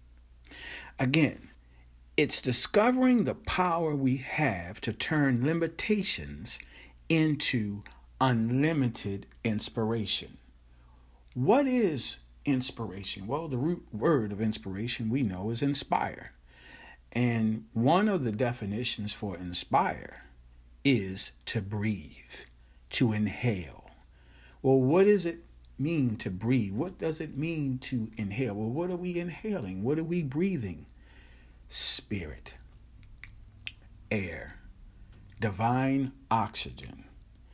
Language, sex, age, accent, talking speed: English, male, 50-69, American, 100 wpm